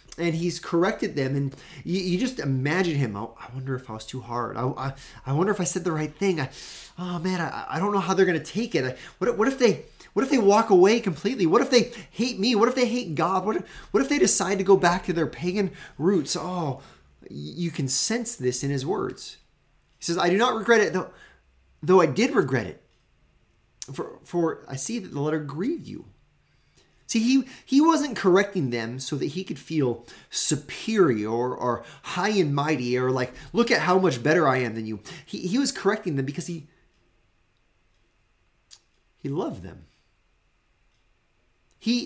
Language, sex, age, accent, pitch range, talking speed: English, male, 30-49, American, 125-190 Hz, 205 wpm